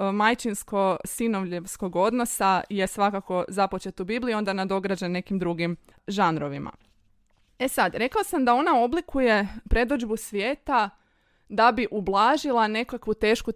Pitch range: 195-240 Hz